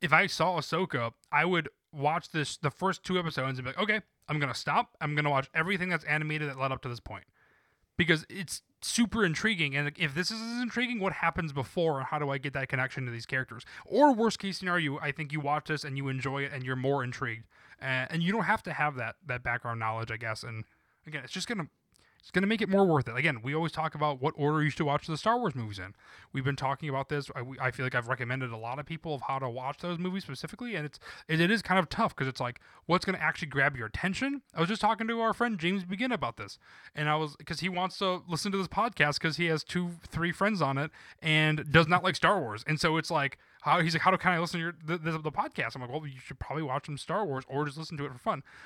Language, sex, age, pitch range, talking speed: English, male, 20-39, 135-180 Hz, 275 wpm